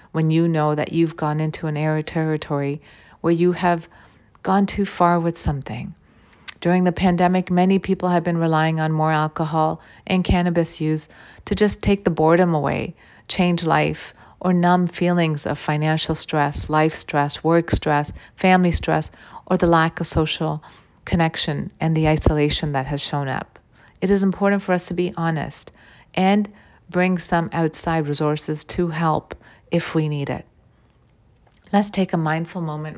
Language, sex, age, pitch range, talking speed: English, female, 40-59, 155-180 Hz, 160 wpm